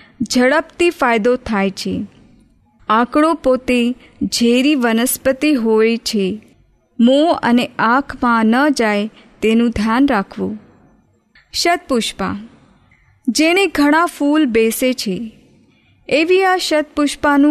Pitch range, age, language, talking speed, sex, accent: 230-295 Hz, 30-49, Hindi, 65 wpm, female, native